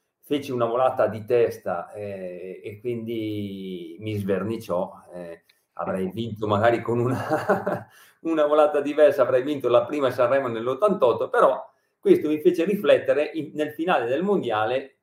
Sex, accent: male, native